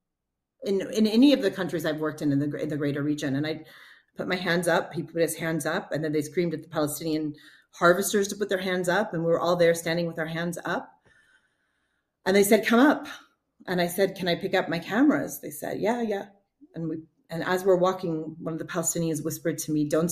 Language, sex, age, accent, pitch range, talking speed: English, female, 30-49, American, 160-205 Hz, 240 wpm